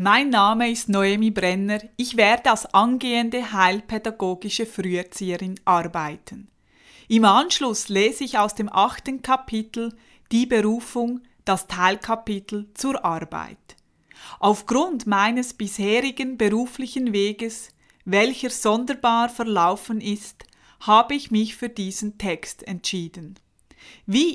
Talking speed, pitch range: 105 wpm, 195-245 Hz